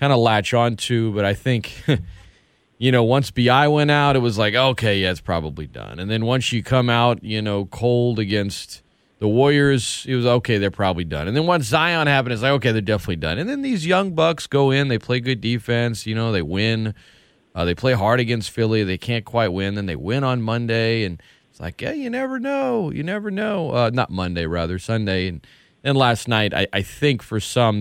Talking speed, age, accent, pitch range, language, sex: 230 wpm, 30-49, American, 95-125 Hz, English, male